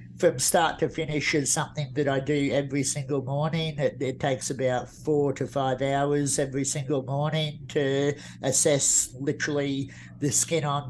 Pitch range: 140-150 Hz